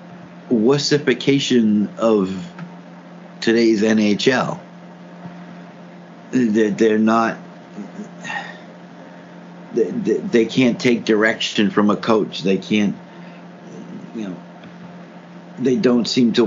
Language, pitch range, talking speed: English, 95-115 Hz, 85 wpm